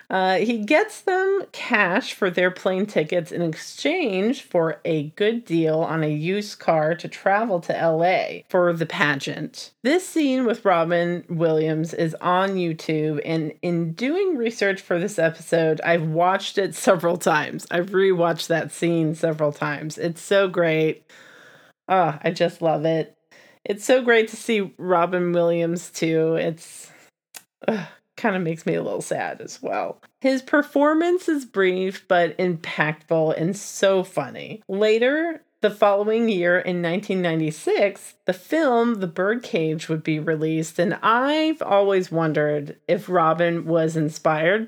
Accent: American